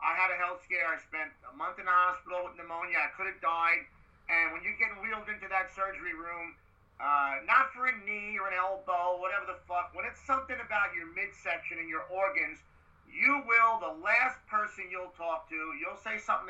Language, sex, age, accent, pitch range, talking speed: English, male, 30-49, American, 180-225 Hz, 210 wpm